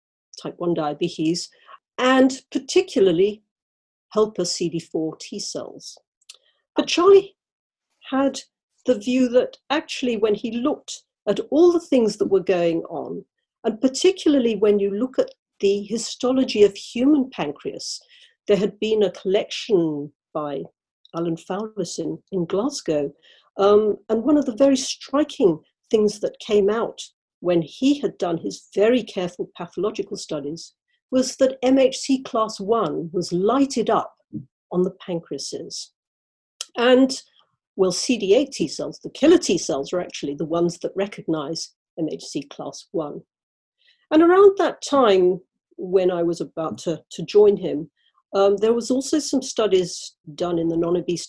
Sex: female